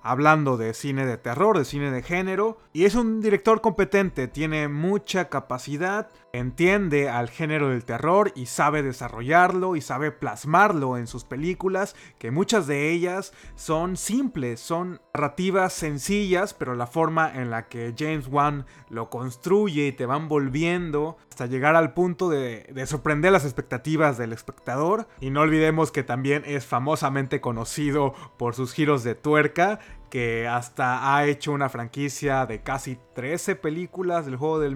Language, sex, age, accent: Spanish, male, 30-49, Mexican